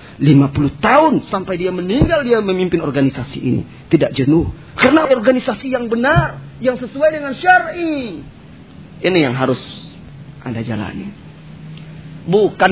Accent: native